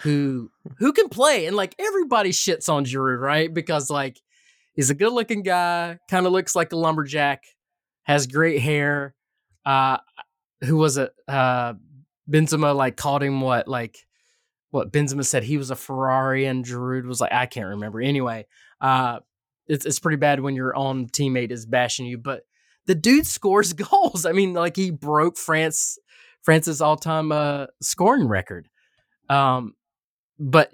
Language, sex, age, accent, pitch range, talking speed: English, male, 20-39, American, 130-160 Hz, 165 wpm